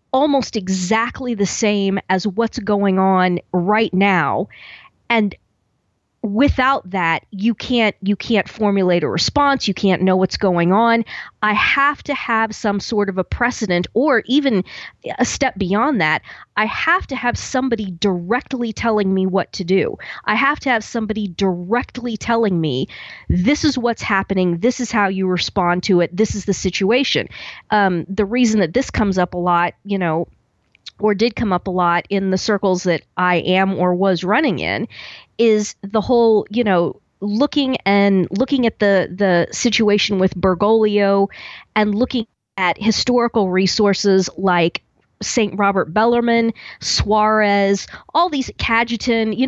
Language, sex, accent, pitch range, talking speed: English, female, American, 190-235 Hz, 160 wpm